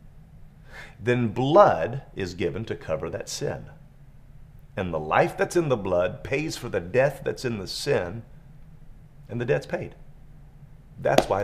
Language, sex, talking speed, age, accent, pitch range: English, male, 150 wpm, 40-59, American, 110-145 Hz